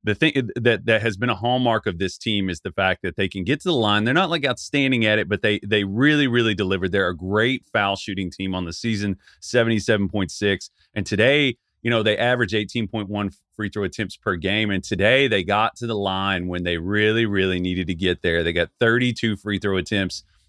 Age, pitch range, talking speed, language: 30-49, 95-120 Hz, 225 wpm, English